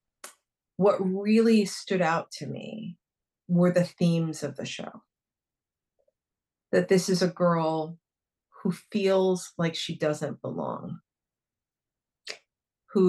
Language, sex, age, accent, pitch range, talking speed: English, female, 40-59, American, 155-195 Hz, 110 wpm